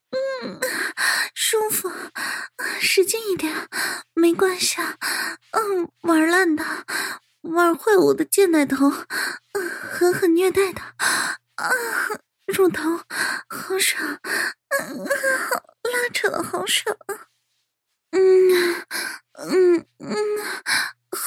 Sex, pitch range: female, 295-385 Hz